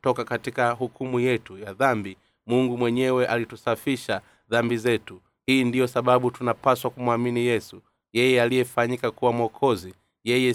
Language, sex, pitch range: Swahili, male, 110-125 Hz